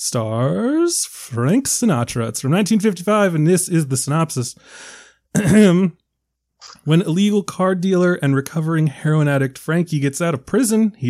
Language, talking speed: English, 135 wpm